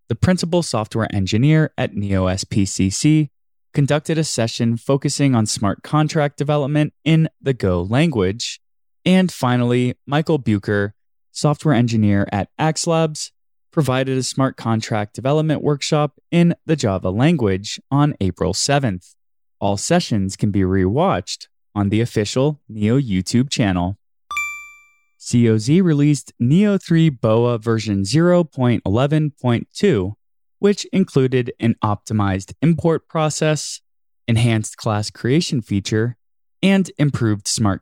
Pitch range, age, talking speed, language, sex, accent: 110-155 Hz, 20-39, 110 wpm, English, male, American